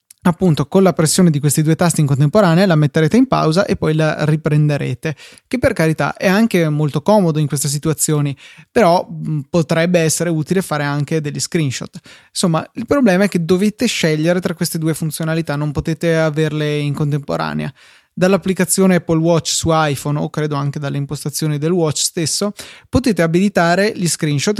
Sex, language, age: male, Italian, 20-39